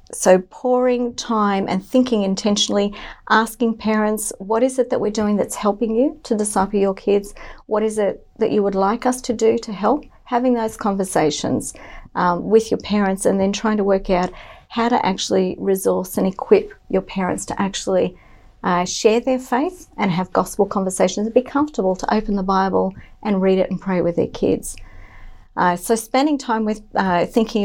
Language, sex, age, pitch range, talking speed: English, female, 50-69, 190-225 Hz, 185 wpm